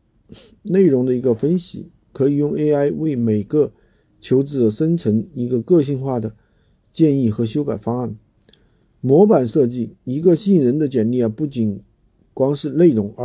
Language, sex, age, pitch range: Chinese, male, 50-69, 115-150 Hz